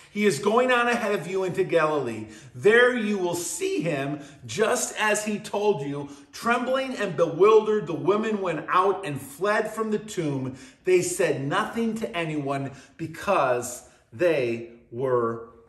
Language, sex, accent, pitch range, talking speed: English, male, American, 130-210 Hz, 150 wpm